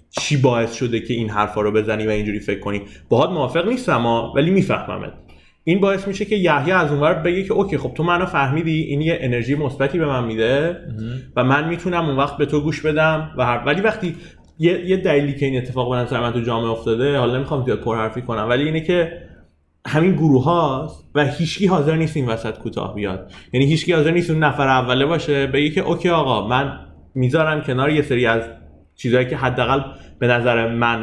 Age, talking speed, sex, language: 20-39, 205 wpm, male, Persian